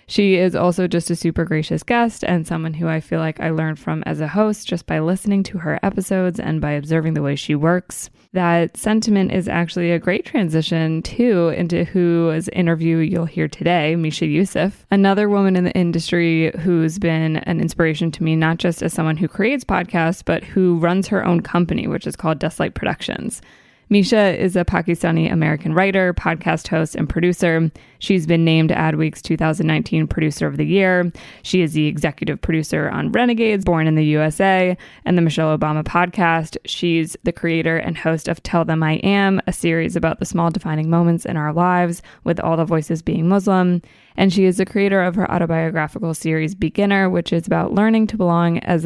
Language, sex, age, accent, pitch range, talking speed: English, female, 20-39, American, 160-190 Hz, 190 wpm